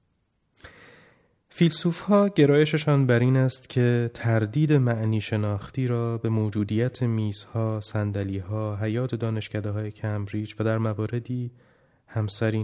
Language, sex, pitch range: Persian, male, 105-125 Hz